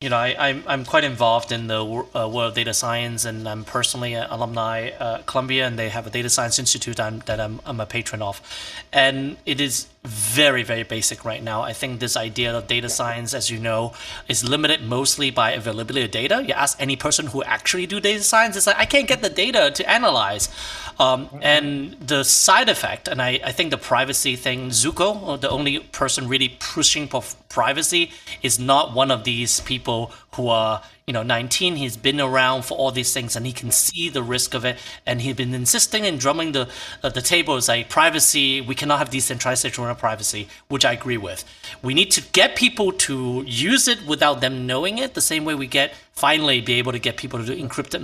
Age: 30-49